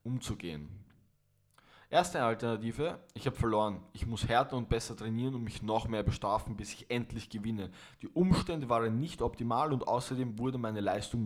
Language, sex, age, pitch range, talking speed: German, male, 20-39, 100-125 Hz, 165 wpm